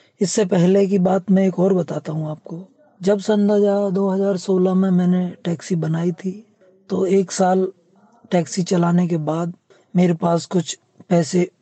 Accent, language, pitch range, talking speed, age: native, Hindi, 175-195 Hz, 155 wpm, 20-39